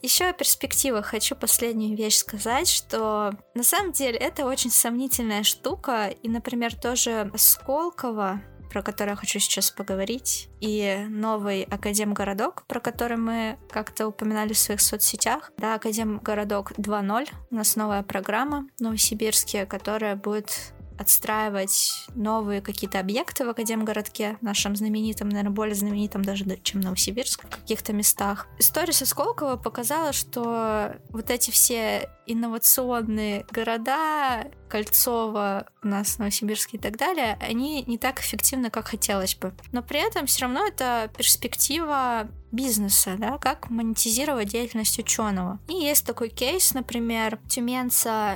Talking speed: 135 wpm